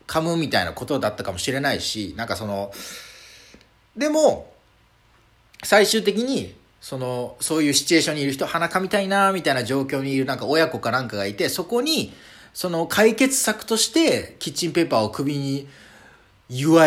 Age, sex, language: 40-59, male, Japanese